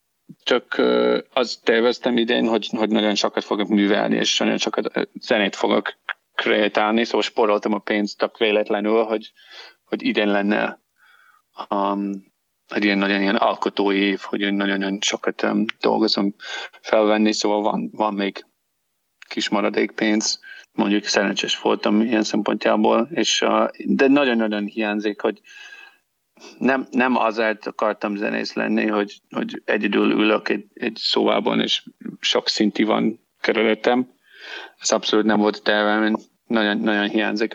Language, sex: Hungarian, male